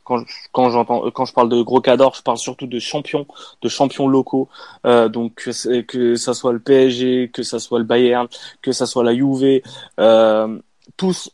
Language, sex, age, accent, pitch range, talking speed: French, male, 20-39, French, 120-140 Hz, 205 wpm